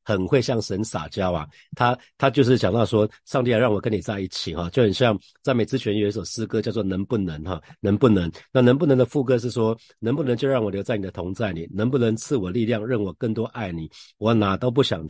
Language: Chinese